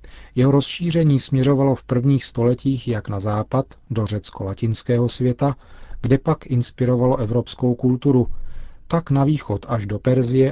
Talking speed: 130 wpm